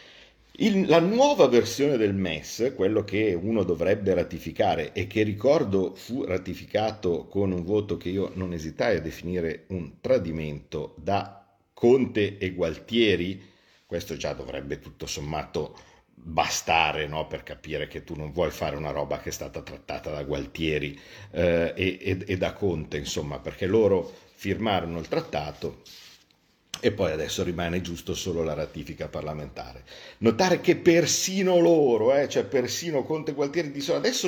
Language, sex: Italian, male